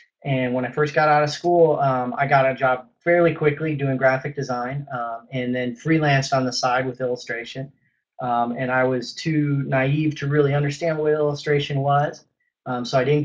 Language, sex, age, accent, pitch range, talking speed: English, male, 30-49, American, 130-150 Hz, 195 wpm